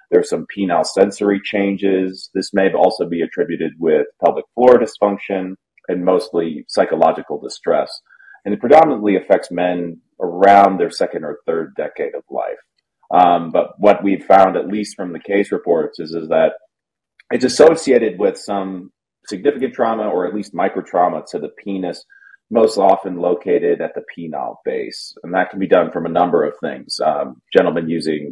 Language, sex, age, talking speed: English, male, 30-49, 165 wpm